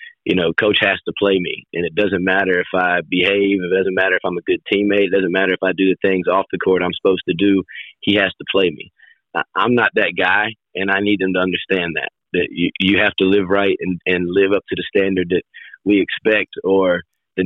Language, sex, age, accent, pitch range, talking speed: English, male, 30-49, American, 95-120 Hz, 250 wpm